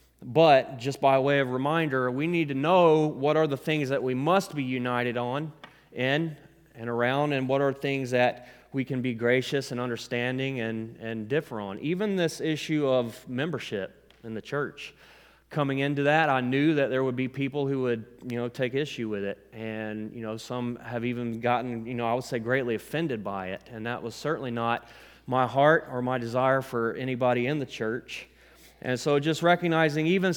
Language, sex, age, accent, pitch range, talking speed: English, male, 30-49, American, 120-150 Hz, 200 wpm